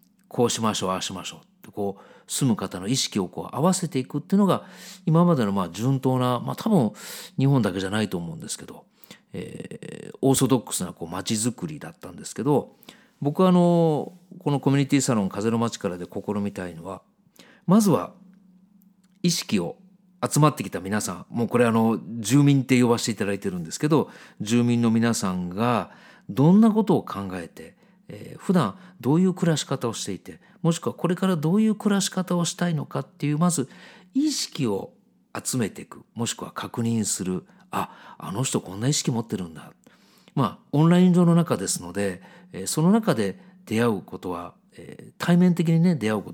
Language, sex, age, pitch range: Japanese, male, 40-59, 110-180 Hz